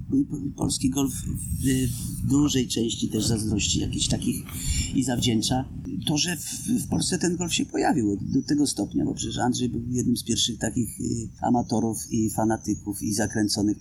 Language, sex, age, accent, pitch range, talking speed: Polish, male, 30-49, native, 105-125 Hz, 150 wpm